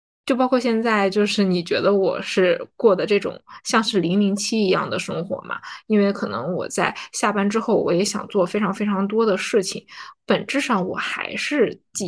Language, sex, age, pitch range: Chinese, female, 10-29, 195-245 Hz